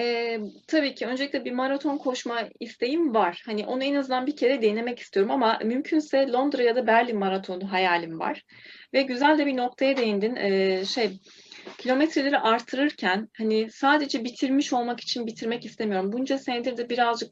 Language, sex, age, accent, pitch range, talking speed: Turkish, female, 30-49, native, 215-270 Hz, 165 wpm